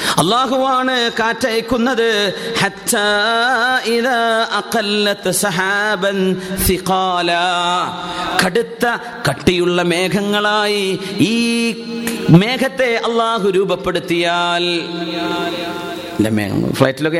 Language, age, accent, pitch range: Malayalam, 30-49, native, 140-195 Hz